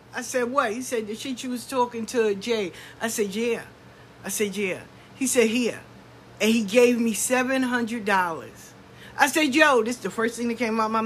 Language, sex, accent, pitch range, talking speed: English, female, American, 220-305 Hz, 215 wpm